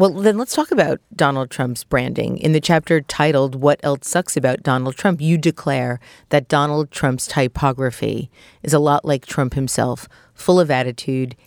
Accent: American